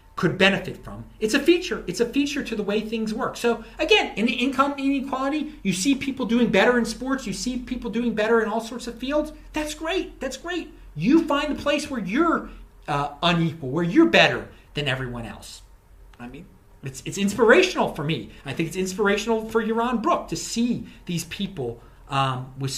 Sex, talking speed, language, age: male, 200 wpm, English, 40-59